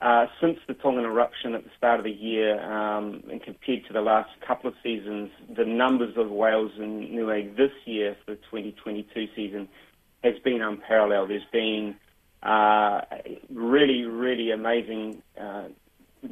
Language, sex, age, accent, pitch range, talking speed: English, male, 30-49, Australian, 105-125 Hz, 160 wpm